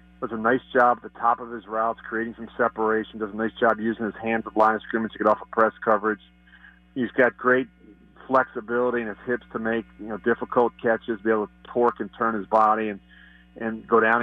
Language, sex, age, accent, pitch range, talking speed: English, male, 40-59, American, 110-130 Hz, 230 wpm